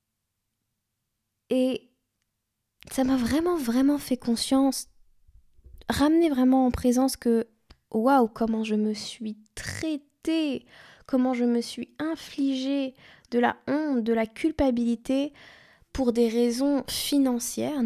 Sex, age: female, 10-29